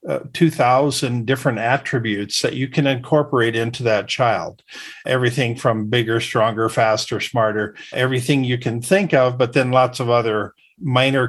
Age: 50-69